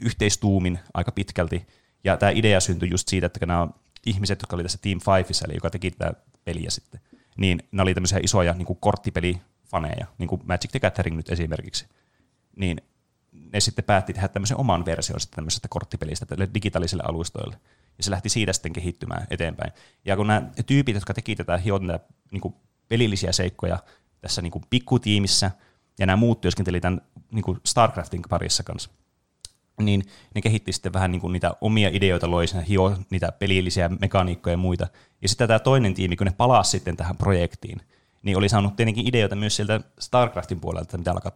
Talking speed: 165 wpm